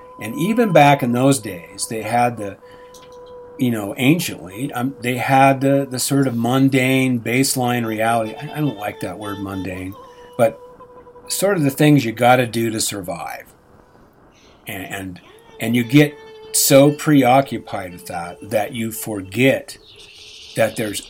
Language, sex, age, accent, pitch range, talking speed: English, male, 50-69, American, 110-140 Hz, 150 wpm